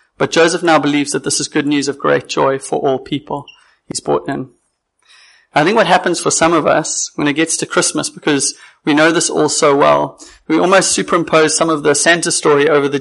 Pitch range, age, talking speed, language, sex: 145-165 Hz, 30-49, 220 wpm, English, male